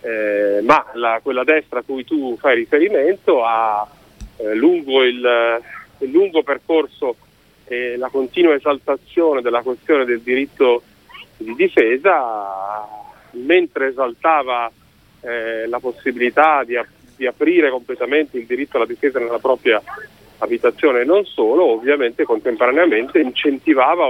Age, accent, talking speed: 40-59, native, 125 wpm